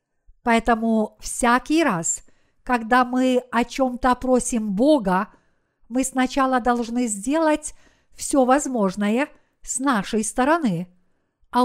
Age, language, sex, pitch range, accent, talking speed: 50-69, Russian, female, 225-275 Hz, native, 100 wpm